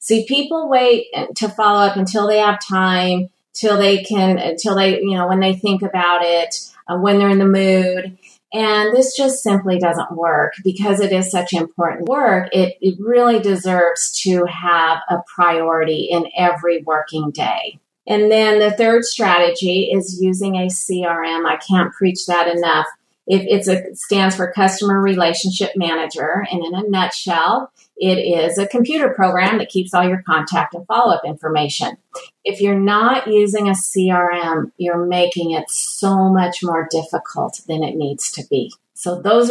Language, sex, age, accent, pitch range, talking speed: English, female, 40-59, American, 175-205 Hz, 170 wpm